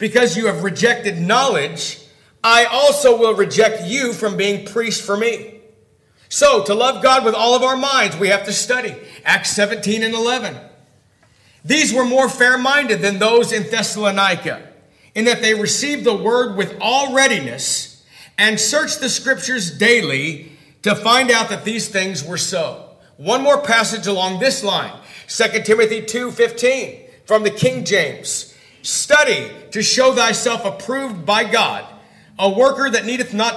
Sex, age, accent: male, 50-69, American